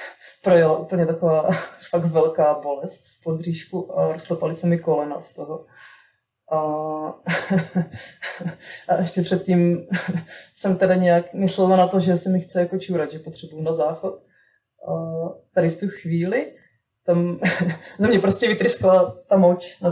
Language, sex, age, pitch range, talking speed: Czech, female, 20-39, 165-185 Hz, 145 wpm